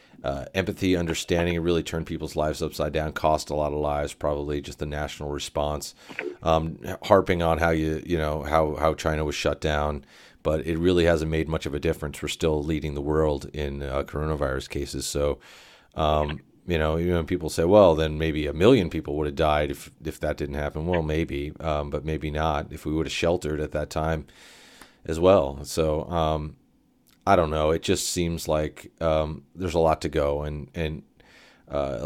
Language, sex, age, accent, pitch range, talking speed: English, male, 40-59, American, 75-85 Hz, 200 wpm